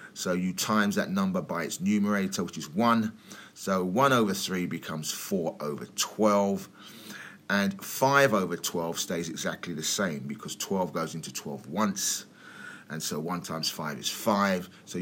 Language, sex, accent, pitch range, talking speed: English, male, British, 90-135 Hz, 165 wpm